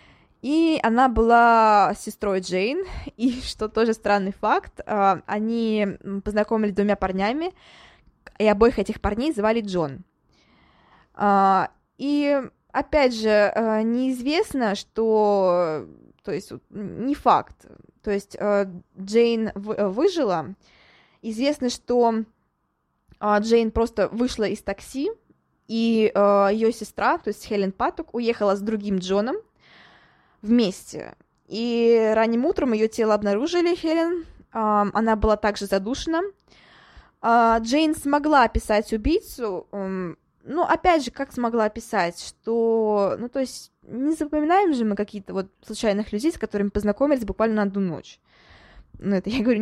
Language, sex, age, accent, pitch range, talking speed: Russian, female, 20-39, native, 205-260 Hz, 115 wpm